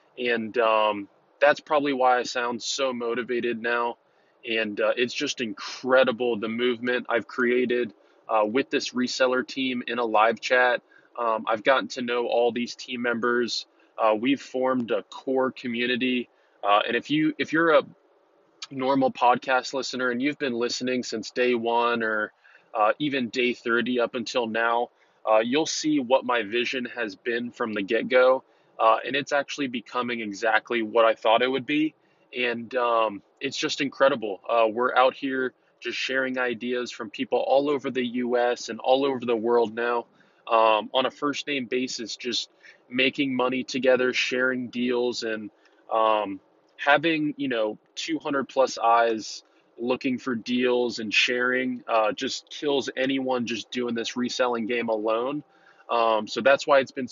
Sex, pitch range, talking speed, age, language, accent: male, 115-130 Hz, 165 wpm, 20-39, English, American